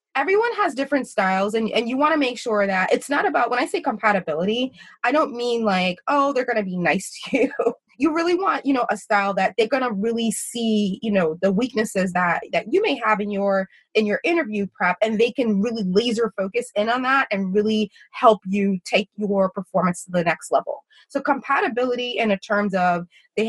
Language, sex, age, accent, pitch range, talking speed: English, female, 20-39, American, 205-270 Hz, 220 wpm